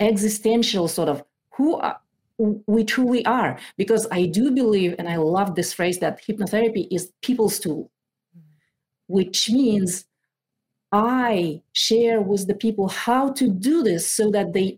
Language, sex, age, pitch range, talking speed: English, female, 40-59, 170-225 Hz, 140 wpm